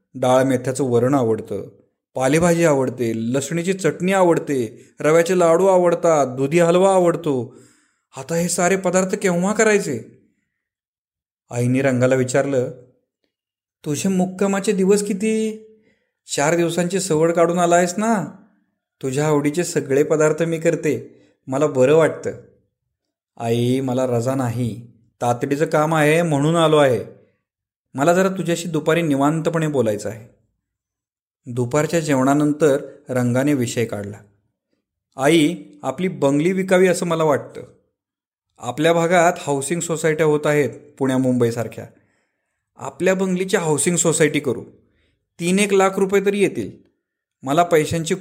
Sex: male